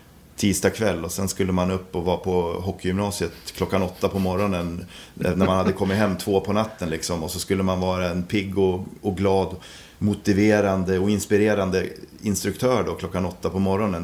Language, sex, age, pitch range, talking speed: Swedish, male, 30-49, 85-105 Hz, 180 wpm